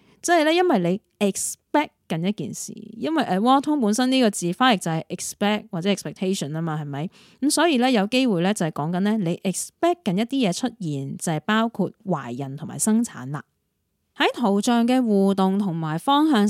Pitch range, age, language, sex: 170-250 Hz, 20-39, Chinese, female